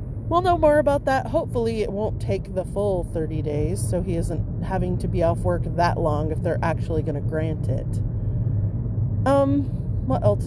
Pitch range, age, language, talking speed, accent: 105-120 Hz, 30-49, English, 190 wpm, American